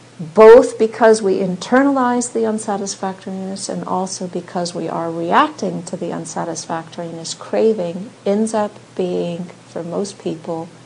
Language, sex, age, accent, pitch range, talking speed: English, female, 50-69, American, 165-190 Hz, 120 wpm